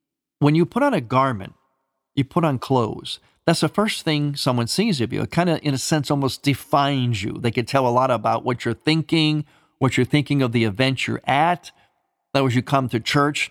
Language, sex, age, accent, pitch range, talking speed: English, male, 50-69, American, 120-155 Hz, 220 wpm